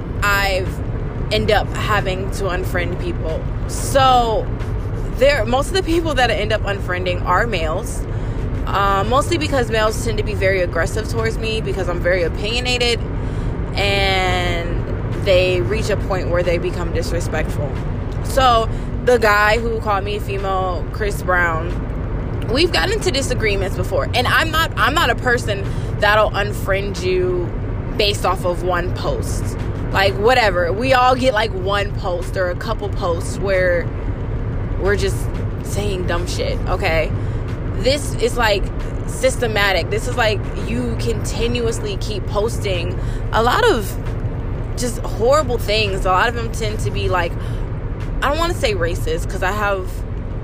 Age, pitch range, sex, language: 20-39, 100-125 Hz, female, English